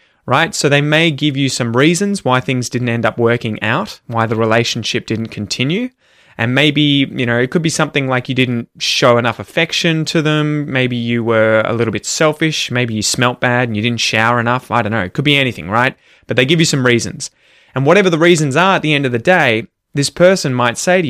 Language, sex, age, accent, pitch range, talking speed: English, male, 20-39, Australian, 115-150 Hz, 235 wpm